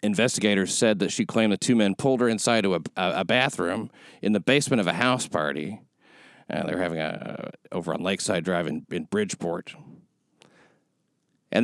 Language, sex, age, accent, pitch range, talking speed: English, male, 40-59, American, 110-165 Hz, 190 wpm